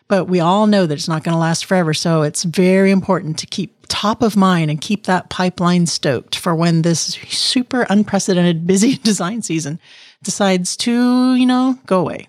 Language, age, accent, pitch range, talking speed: English, 40-59, American, 170-205 Hz, 190 wpm